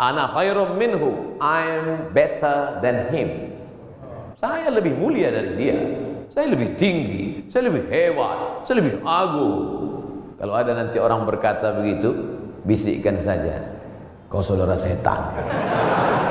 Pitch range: 110-135 Hz